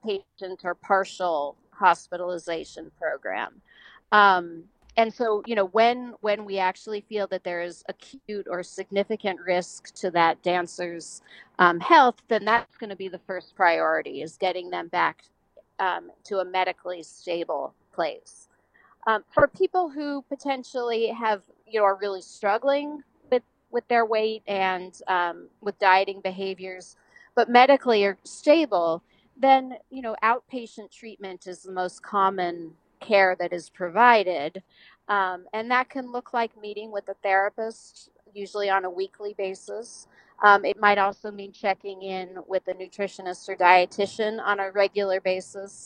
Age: 40-59